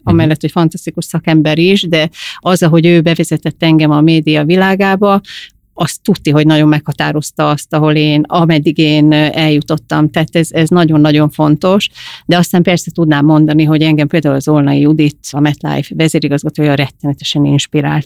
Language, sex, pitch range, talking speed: Hungarian, female, 150-170 Hz, 155 wpm